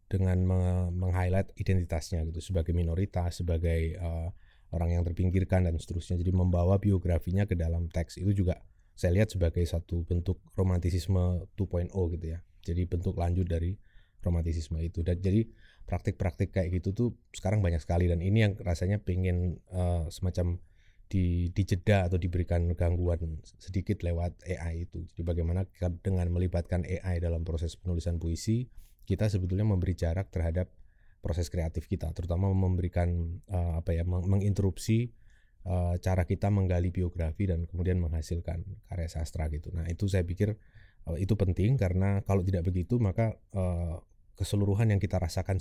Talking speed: 140 wpm